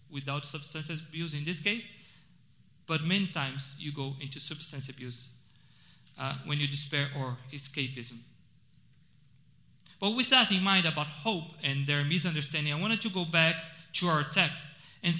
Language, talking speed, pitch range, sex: English, 155 wpm, 145-195 Hz, male